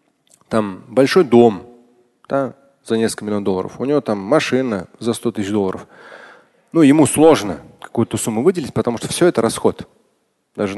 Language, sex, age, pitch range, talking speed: Russian, male, 30-49, 115-155 Hz, 155 wpm